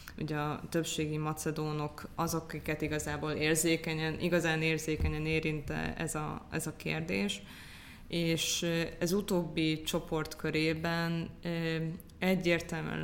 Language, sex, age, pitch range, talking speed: Hungarian, female, 20-39, 145-170 Hz, 95 wpm